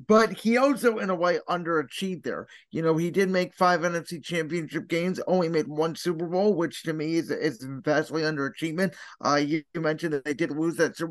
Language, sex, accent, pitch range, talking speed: English, male, American, 155-185 Hz, 200 wpm